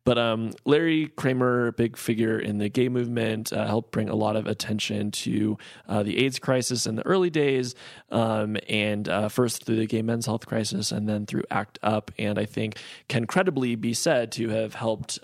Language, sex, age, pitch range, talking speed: English, male, 20-39, 110-125 Hz, 205 wpm